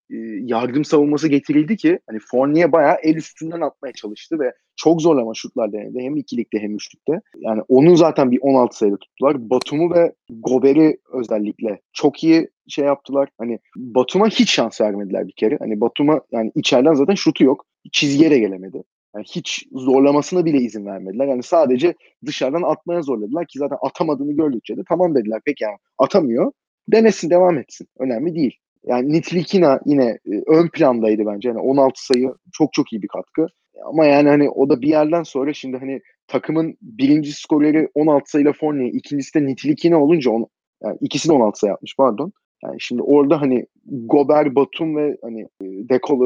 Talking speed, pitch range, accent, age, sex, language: 170 wpm, 125-160 Hz, native, 30-49, male, Turkish